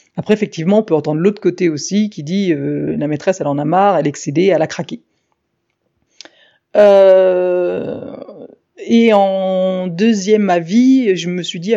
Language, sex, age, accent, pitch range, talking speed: French, female, 30-49, French, 165-205 Hz, 175 wpm